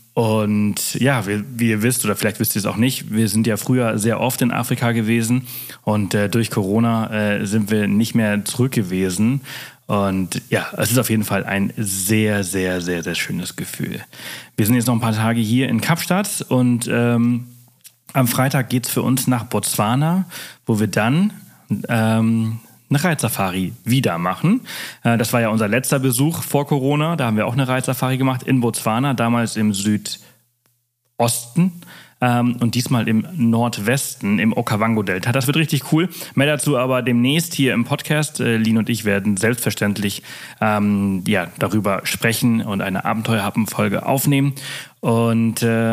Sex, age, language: male, 30-49, German